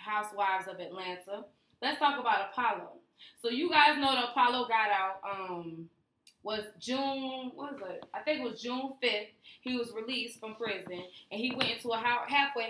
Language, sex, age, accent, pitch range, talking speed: English, female, 20-39, American, 210-260 Hz, 180 wpm